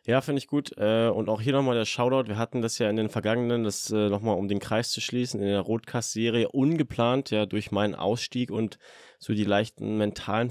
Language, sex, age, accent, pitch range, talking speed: German, male, 20-39, German, 100-120 Hz, 225 wpm